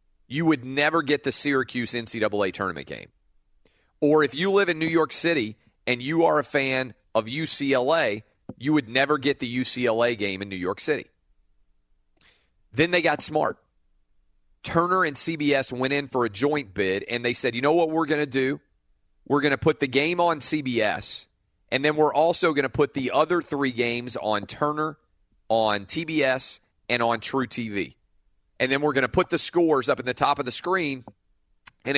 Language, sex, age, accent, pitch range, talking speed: English, male, 40-59, American, 110-155 Hz, 190 wpm